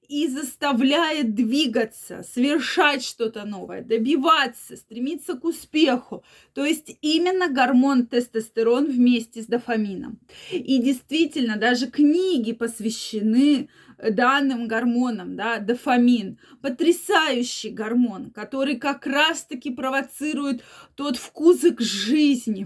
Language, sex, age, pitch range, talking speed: Russian, female, 20-39, 230-280 Hz, 95 wpm